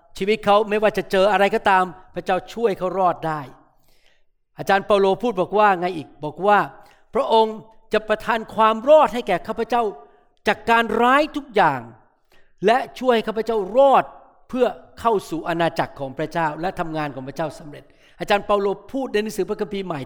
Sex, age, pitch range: male, 60-79, 180-235 Hz